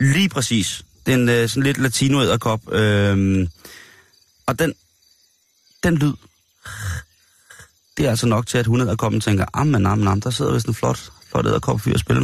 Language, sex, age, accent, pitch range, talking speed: Danish, male, 30-49, native, 95-130 Hz, 175 wpm